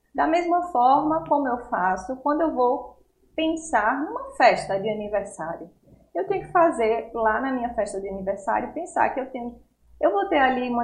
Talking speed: 185 wpm